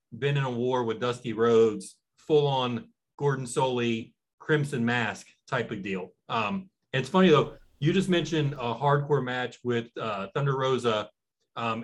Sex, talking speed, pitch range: male, 150 wpm, 115-145 Hz